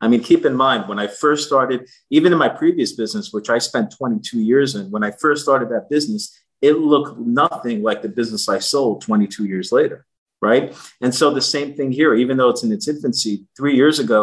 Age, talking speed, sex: 40-59, 225 wpm, male